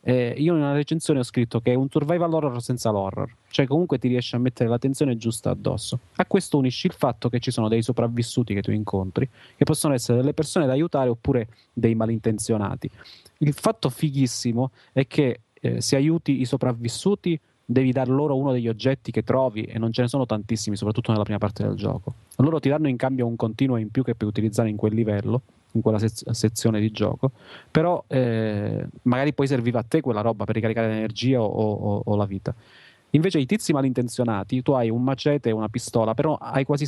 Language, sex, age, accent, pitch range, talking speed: Italian, male, 30-49, native, 110-135 Hz, 205 wpm